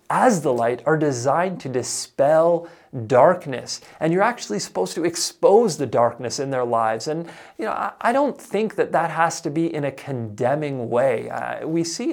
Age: 30-49